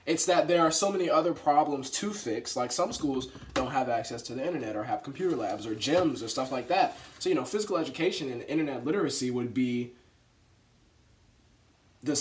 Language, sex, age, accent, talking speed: English, male, 20-39, American, 195 wpm